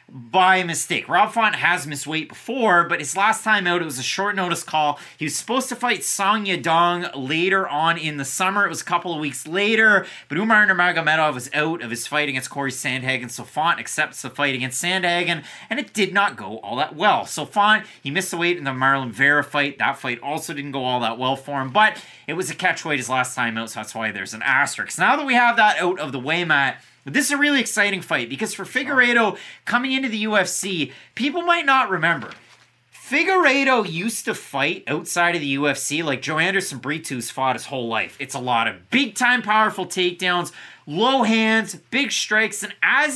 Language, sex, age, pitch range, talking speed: English, male, 30-49, 135-210 Hz, 220 wpm